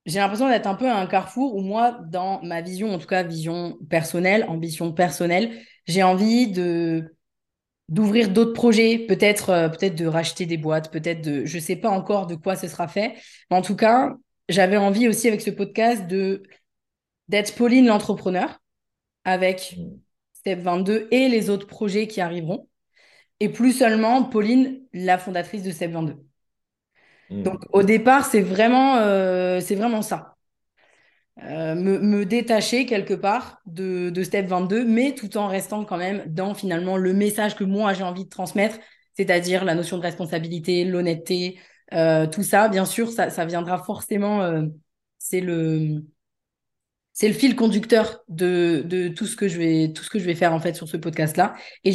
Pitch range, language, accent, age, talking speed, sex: 175-215 Hz, French, French, 20-39, 180 wpm, female